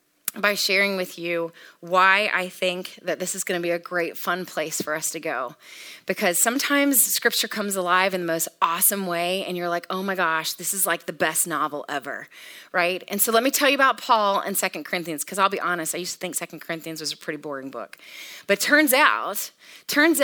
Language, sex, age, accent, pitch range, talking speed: English, female, 30-49, American, 175-220 Hz, 220 wpm